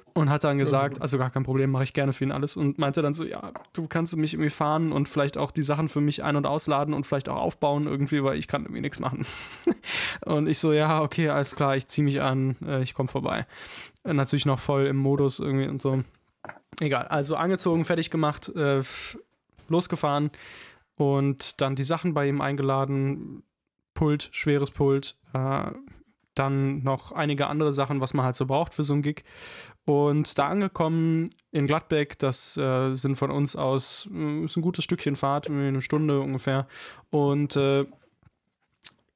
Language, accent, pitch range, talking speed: German, German, 140-160 Hz, 180 wpm